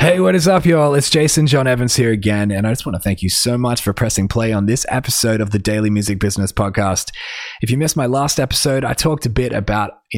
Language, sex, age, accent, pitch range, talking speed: English, male, 20-39, Australian, 105-130 Hz, 260 wpm